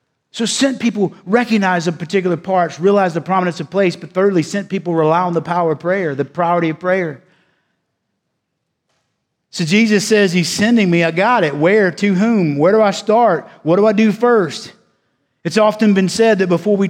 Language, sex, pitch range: English, male, 175-220 Hz